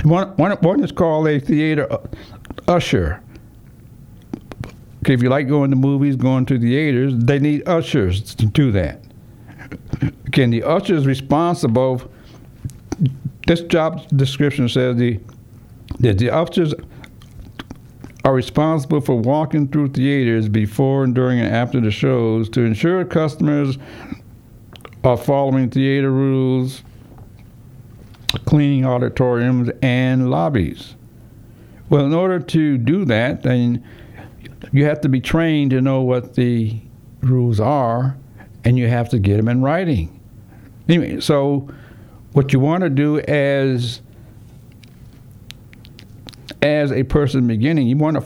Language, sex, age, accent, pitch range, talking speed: English, male, 60-79, American, 115-145 Hz, 120 wpm